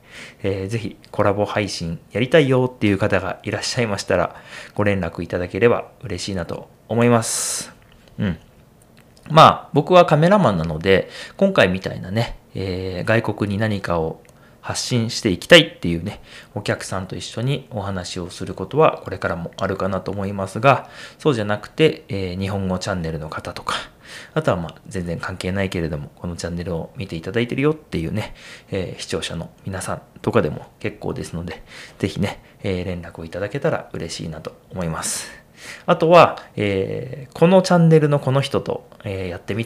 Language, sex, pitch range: Japanese, male, 90-125 Hz